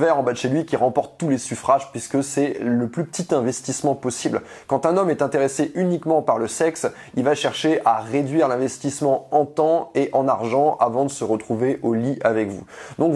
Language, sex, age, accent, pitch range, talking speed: French, male, 20-39, French, 115-150 Hz, 210 wpm